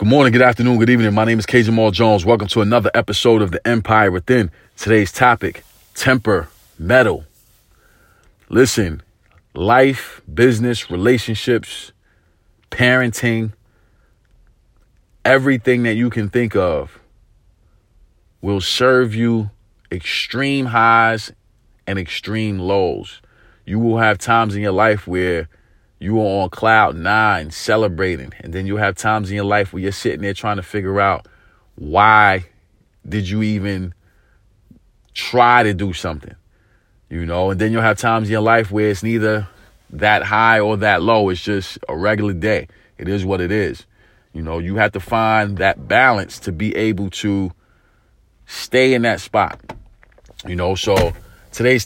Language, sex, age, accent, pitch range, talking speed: English, male, 30-49, American, 95-115 Hz, 150 wpm